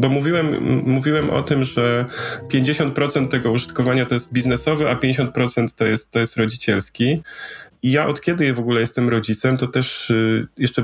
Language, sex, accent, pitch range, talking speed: Polish, male, native, 110-125 Hz, 175 wpm